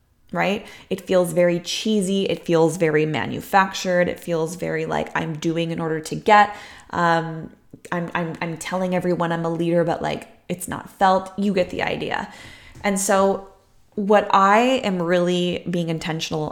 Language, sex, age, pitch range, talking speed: English, female, 20-39, 165-200 Hz, 165 wpm